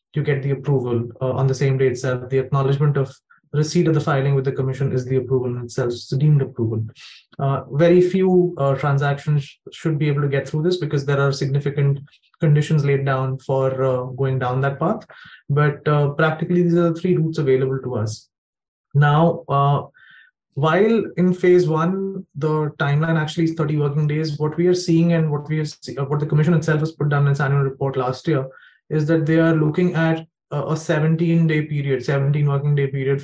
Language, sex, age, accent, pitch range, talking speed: English, male, 20-39, Indian, 135-160 Hz, 205 wpm